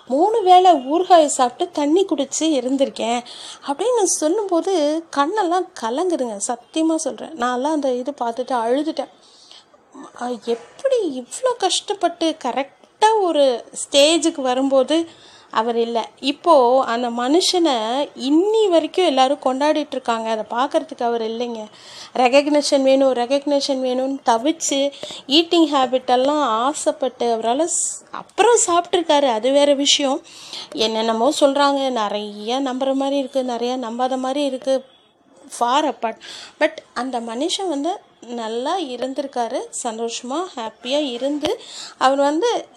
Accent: native